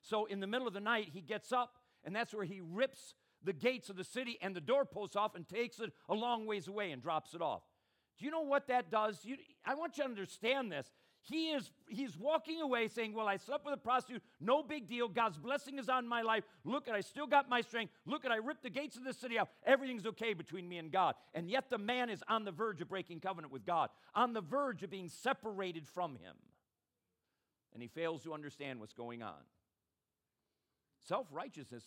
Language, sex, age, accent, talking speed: English, male, 50-69, American, 230 wpm